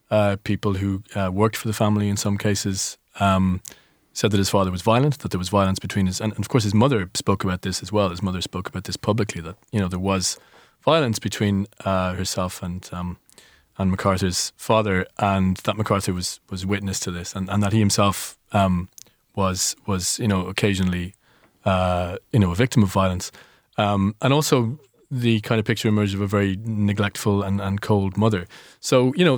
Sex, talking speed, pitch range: male, 205 wpm, 95-110 Hz